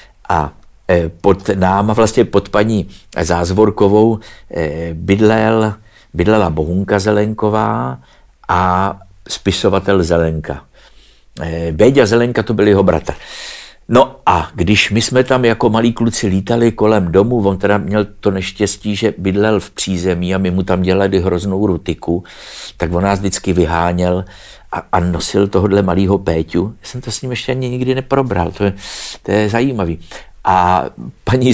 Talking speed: 145 wpm